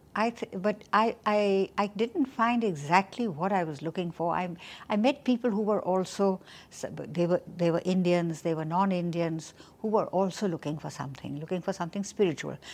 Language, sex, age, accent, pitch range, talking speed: English, female, 60-79, Indian, 165-210 Hz, 185 wpm